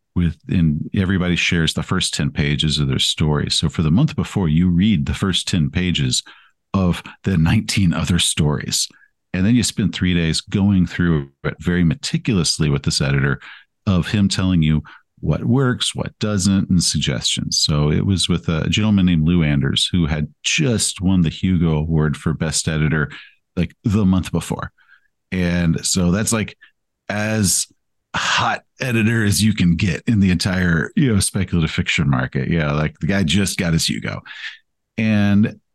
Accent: American